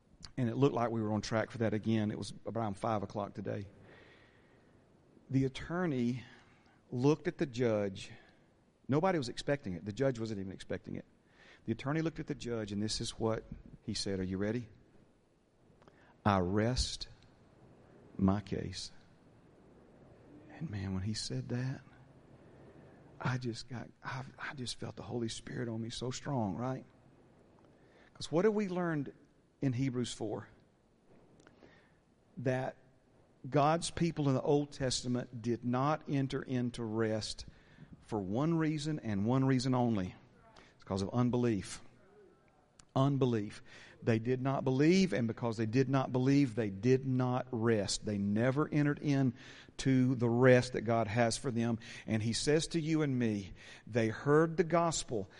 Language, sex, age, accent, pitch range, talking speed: English, male, 40-59, American, 110-135 Hz, 155 wpm